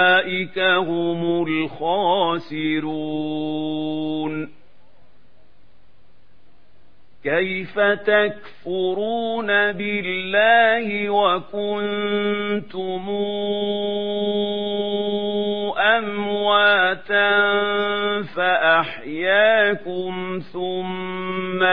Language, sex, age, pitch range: Arabic, male, 50-69, 160-200 Hz